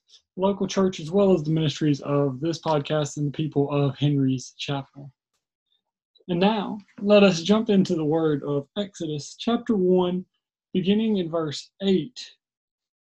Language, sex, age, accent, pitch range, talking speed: English, male, 30-49, American, 150-205 Hz, 145 wpm